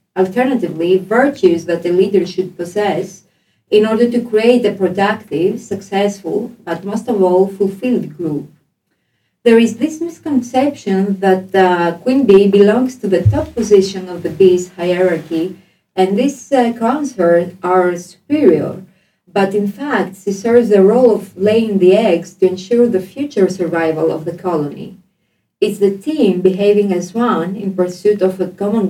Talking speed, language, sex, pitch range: 150 wpm, Swedish, female, 180-220 Hz